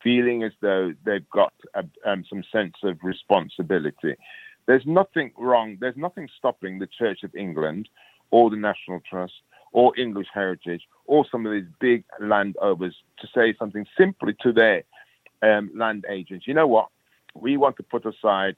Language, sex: English, male